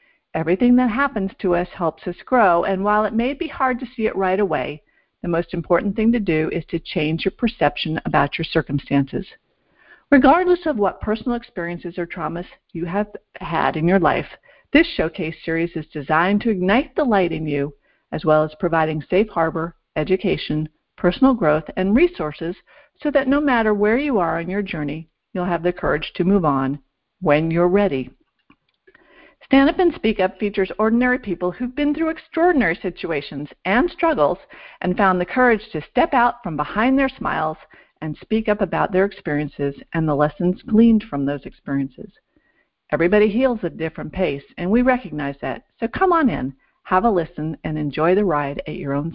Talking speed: 185 wpm